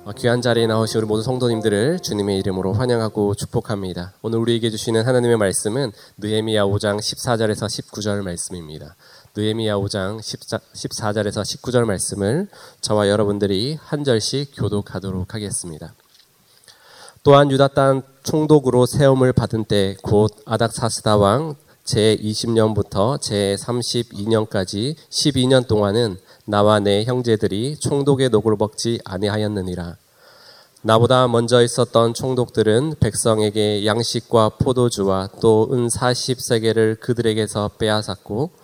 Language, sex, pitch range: Korean, male, 105-125 Hz